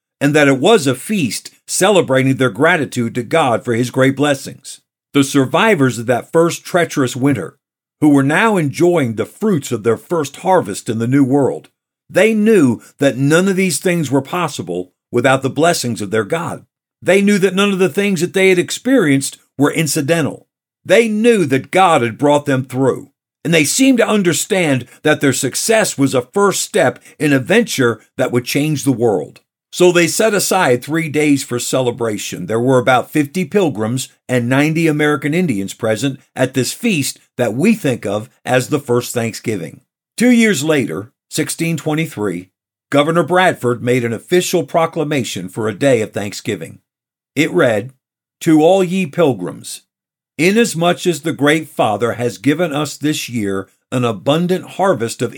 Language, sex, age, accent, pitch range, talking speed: English, male, 50-69, American, 125-170 Hz, 170 wpm